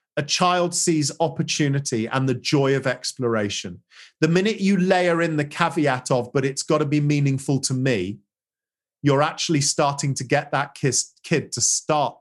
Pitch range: 140-195 Hz